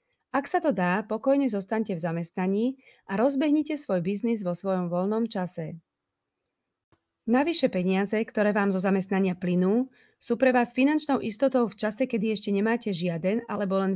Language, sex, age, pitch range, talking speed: Slovak, female, 30-49, 185-245 Hz, 155 wpm